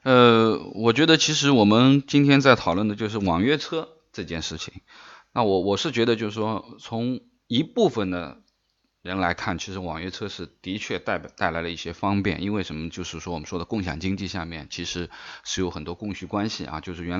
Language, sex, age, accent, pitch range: Chinese, male, 20-39, native, 85-115 Hz